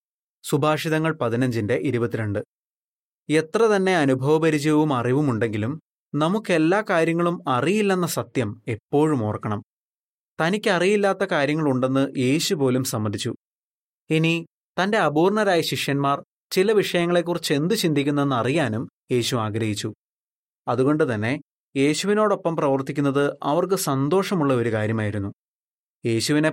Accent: native